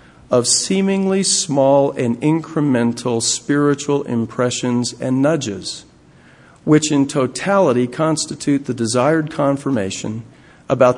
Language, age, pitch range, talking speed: English, 50-69, 120-150 Hz, 95 wpm